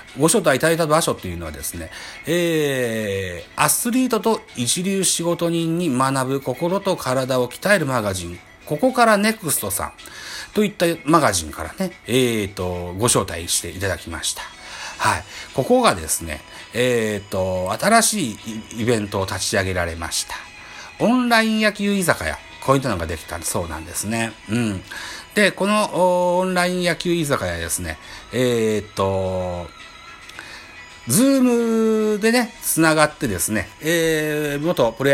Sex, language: male, Japanese